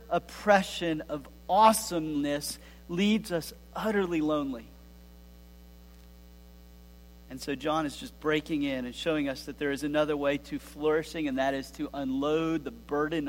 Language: English